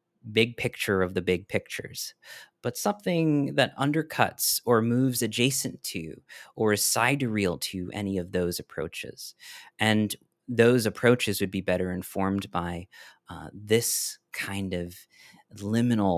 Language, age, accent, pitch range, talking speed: English, 30-49, American, 95-125 Hz, 135 wpm